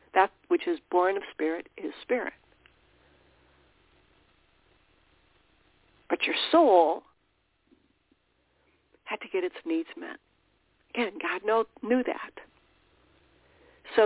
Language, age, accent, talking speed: English, 60-79, American, 100 wpm